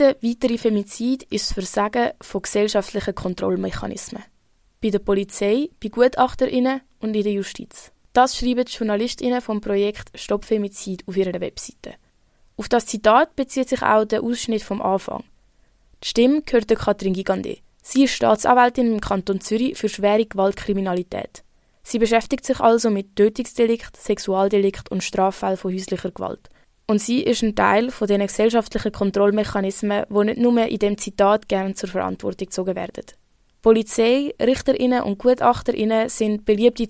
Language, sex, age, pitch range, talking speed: German, female, 20-39, 200-235 Hz, 150 wpm